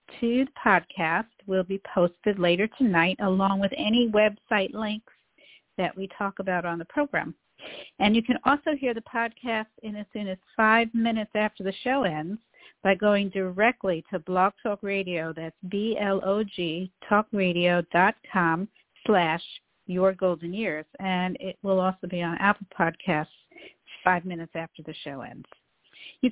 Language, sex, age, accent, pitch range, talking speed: English, female, 50-69, American, 185-230 Hz, 160 wpm